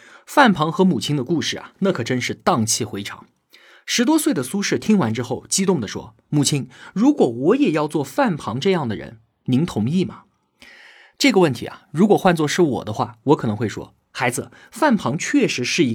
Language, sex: Chinese, male